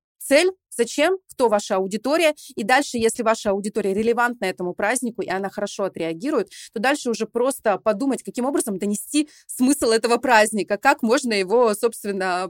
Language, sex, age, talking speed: Russian, female, 30-49, 155 wpm